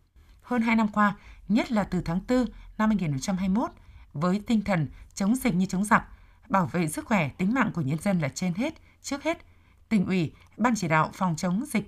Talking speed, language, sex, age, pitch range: 205 wpm, Vietnamese, female, 20-39, 170-220 Hz